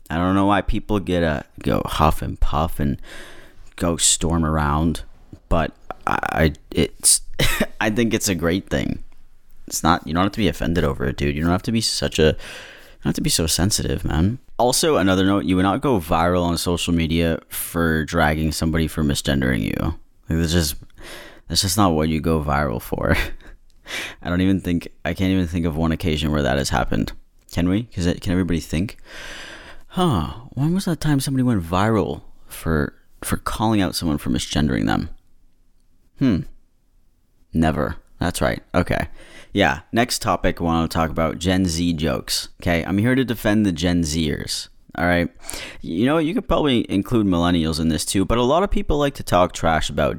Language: English